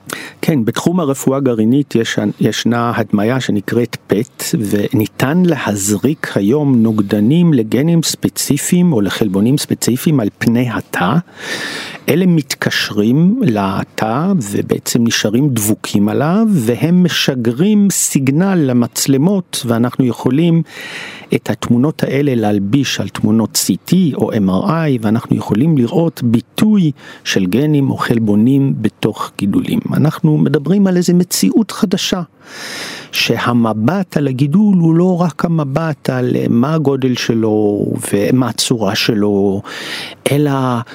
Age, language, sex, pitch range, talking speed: 50-69, Hebrew, male, 115-160 Hz, 110 wpm